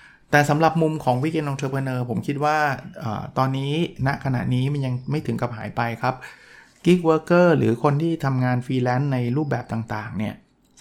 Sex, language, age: male, Thai, 20-39